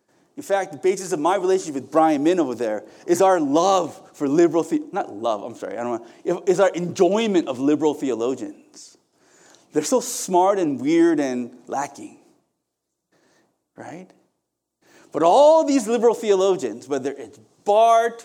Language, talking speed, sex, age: English, 150 wpm, male, 30-49